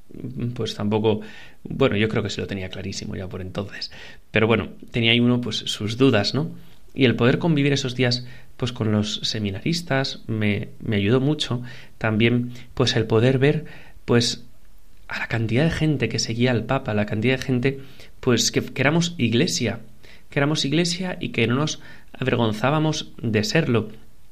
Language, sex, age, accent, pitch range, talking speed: Spanish, male, 30-49, Spanish, 110-130 Hz, 175 wpm